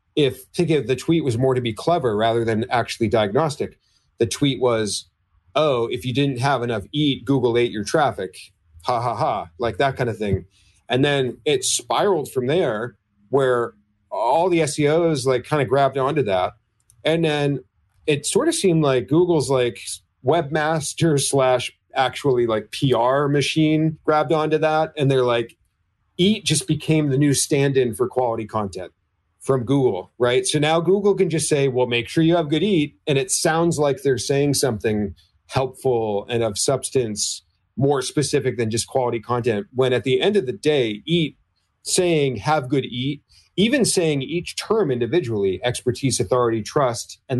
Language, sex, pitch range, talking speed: English, male, 110-150 Hz, 170 wpm